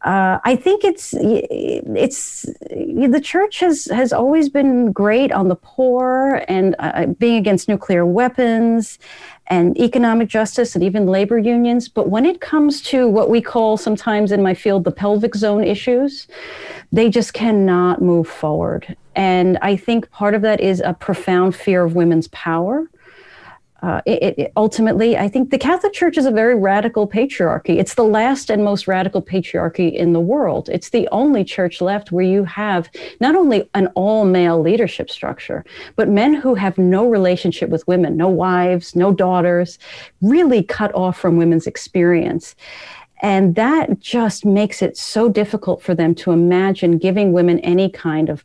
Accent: American